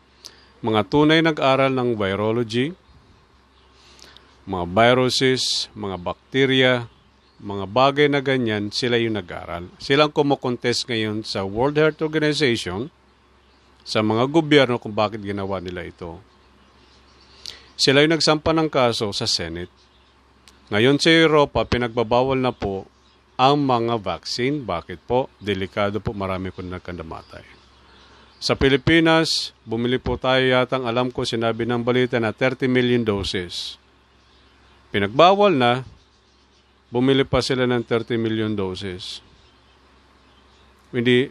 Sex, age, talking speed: male, 50-69, 115 wpm